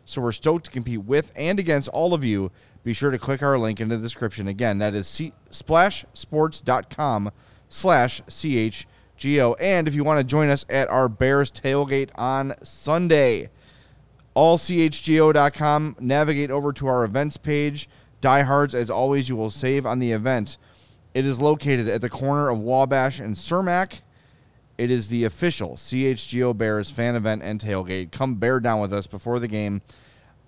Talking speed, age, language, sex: 165 wpm, 30-49, English, male